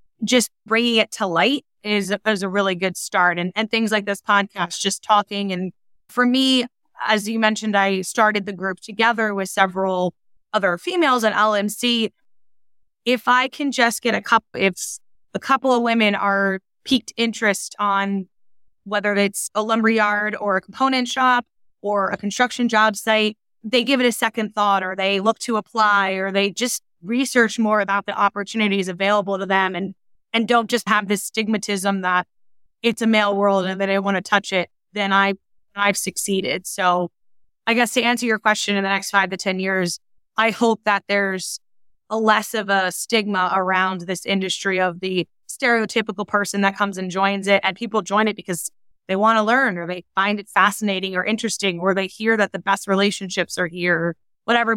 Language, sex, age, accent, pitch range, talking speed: English, female, 20-39, American, 195-220 Hz, 185 wpm